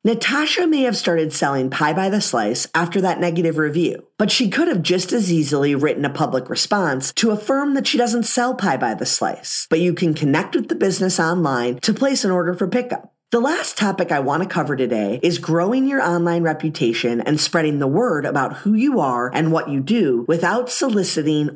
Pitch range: 150-230 Hz